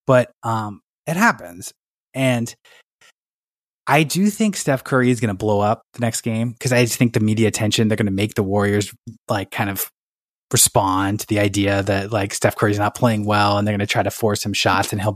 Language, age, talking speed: English, 20-39, 220 wpm